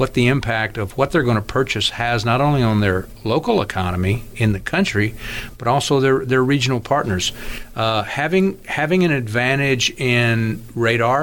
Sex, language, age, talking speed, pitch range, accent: male, English, 50-69, 170 wpm, 110-125 Hz, American